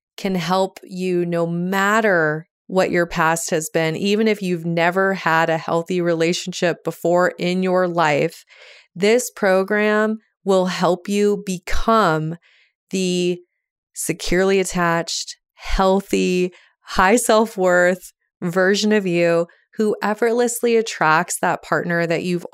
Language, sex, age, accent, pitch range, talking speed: English, female, 30-49, American, 170-205 Hz, 115 wpm